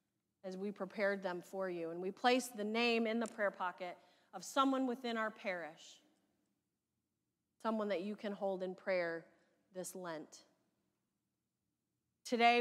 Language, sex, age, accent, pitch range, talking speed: English, female, 30-49, American, 185-235 Hz, 145 wpm